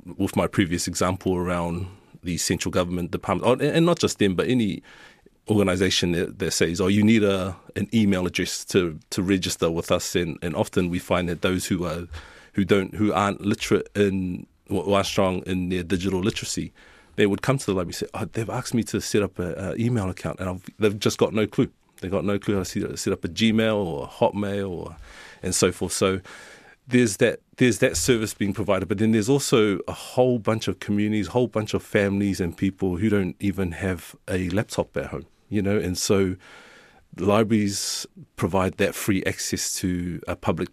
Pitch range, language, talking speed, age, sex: 90-110 Hz, English, 205 wpm, 30-49, male